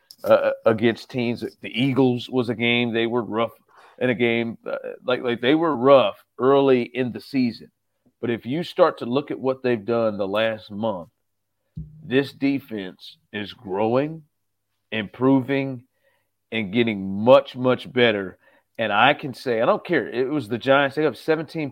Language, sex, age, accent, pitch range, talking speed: English, male, 40-59, American, 110-135 Hz, 170 wpm